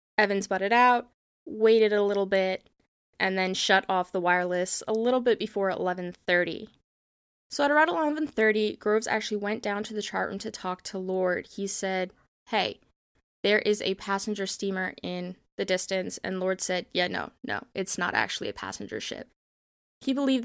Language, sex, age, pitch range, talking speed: English, female, 20-39, 190-225 Hz, 175 wpm